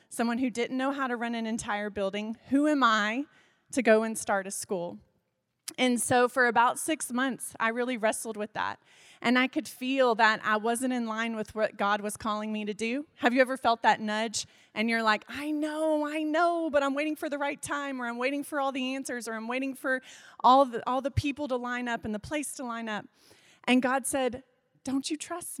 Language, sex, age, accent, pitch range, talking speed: English, female, 30-49, American, 225-275 Hz, 225 wpm